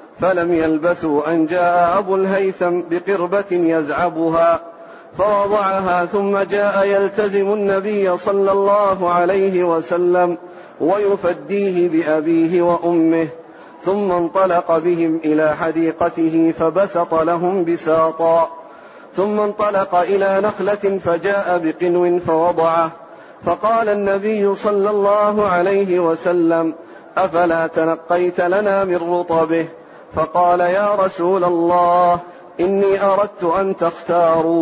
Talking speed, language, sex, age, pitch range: 95 wpm, Arabic, male, 40-59, 165-195 Hz